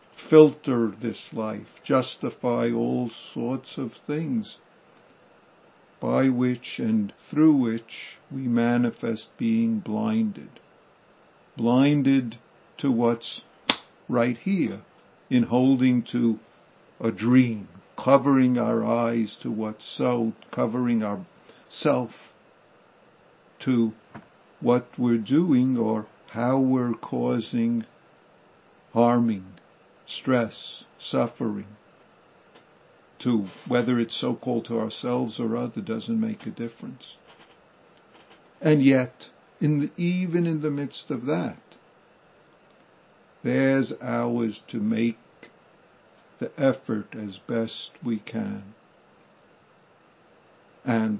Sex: male